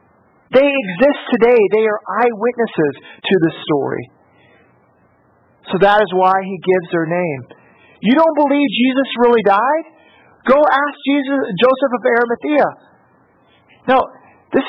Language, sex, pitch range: English, male, 175-235 Hz